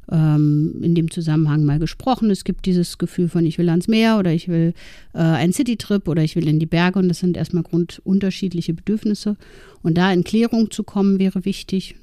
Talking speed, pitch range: 200 wpm, 170-205 Hz